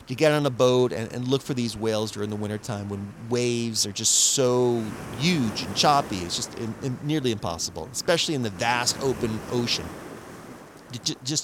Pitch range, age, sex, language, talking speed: 125-195 Hz, 30-49, male, English, 185 wpm